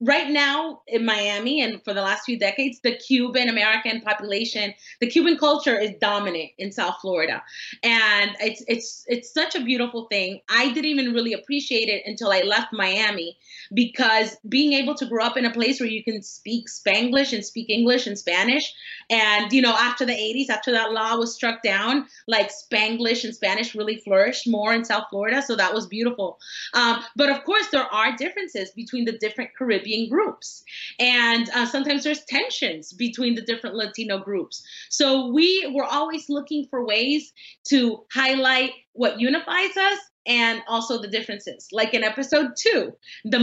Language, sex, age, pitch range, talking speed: English, female, 30-49, 220-275 Hz, 175 wpm